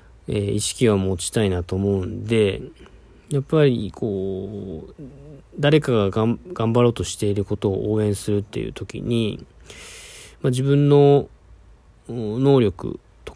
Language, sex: Japanese, male